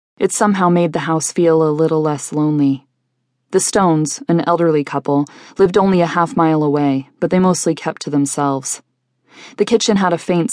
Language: English